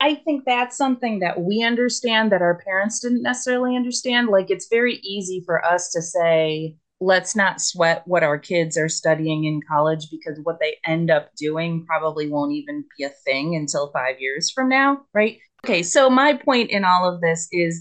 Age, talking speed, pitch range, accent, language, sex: 30-49, 195 wpm, 160-215 Hz, American, English, female